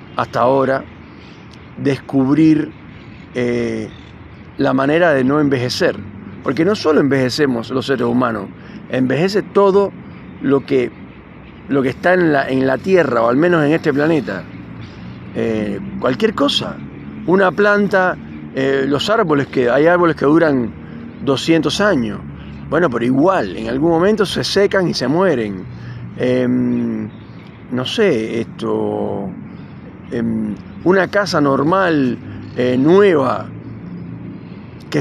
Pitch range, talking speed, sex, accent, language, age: 115-160 Hz, 120 wpm, male, Argentinian, Spanish, 40-59